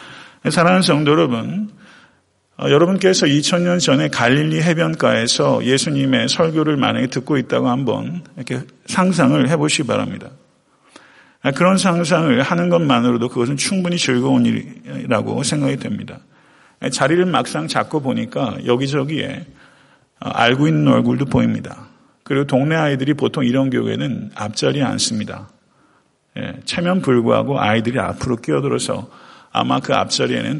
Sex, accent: male, native